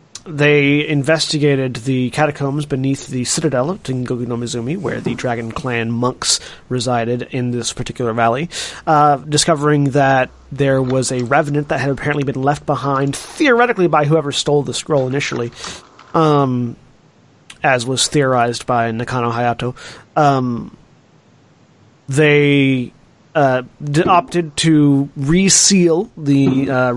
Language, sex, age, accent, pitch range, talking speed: English, male, 30-49, American, 125-155 Hz, 125 wpm